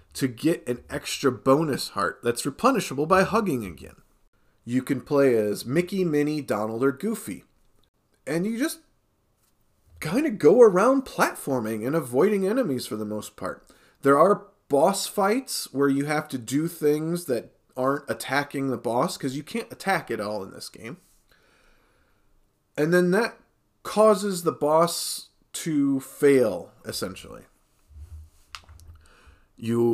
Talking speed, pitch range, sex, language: 140 wpm, 115-185 Hz, male, English